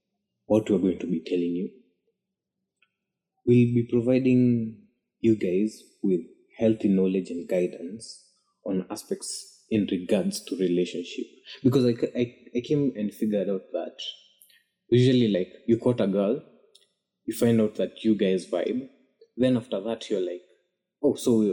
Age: 20-39